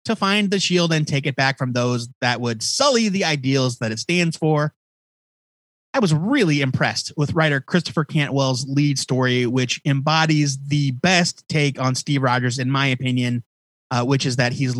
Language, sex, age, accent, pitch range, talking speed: English, male, 30-49, American, 125-155 Hz, 185 wpm